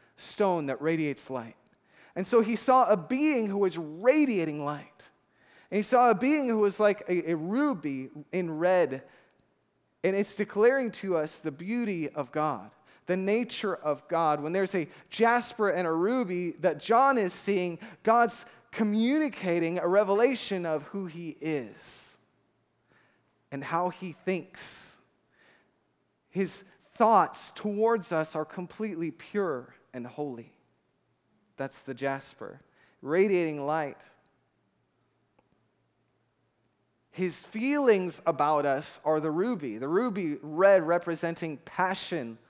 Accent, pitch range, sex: American, 150-210 Hz, male